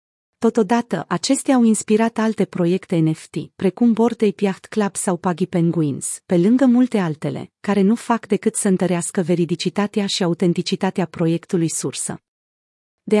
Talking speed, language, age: 135 wpm, Romanian, 30-49